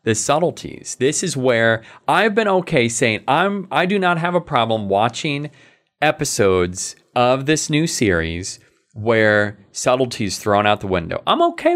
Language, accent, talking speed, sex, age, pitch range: English, American, 160 wpm, male, 30-49, 105-155 Hz